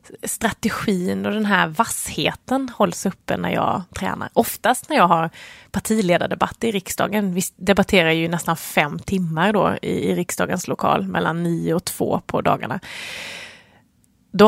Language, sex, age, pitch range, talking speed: English, female, 20-39, 175-225 Hz, 140 wpm